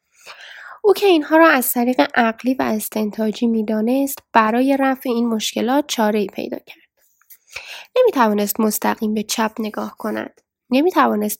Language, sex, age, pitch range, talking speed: Persian, female, 10-29, 205-270 Hz, 130 wpm